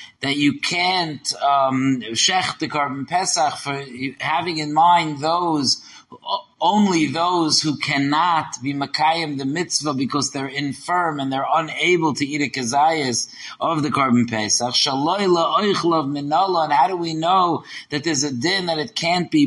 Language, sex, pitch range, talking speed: English, male, 135-185 Hz, 155 wpm